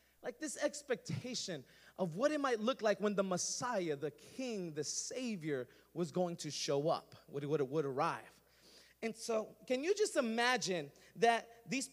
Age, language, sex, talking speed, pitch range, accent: 30-49, Spanish, male, 170 wpm, 190-265 Hz, American